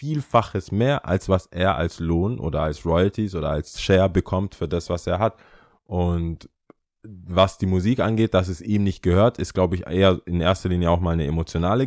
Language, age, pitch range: German, 20-39, 85-100 Hz